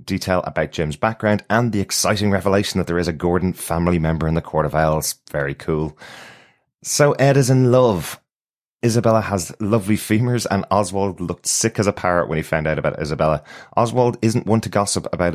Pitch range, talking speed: 80-105 Hz, 195 wpm